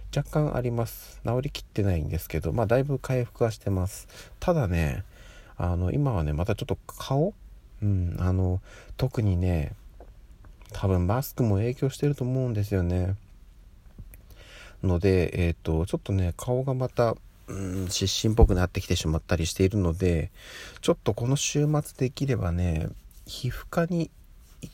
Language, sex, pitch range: Japanese, male, 90-120 Hz